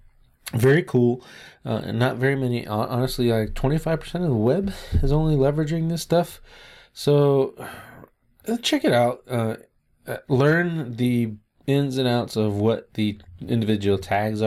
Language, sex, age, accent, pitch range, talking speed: English, male, 20-39, American, 105-130 Hz, 140 wpm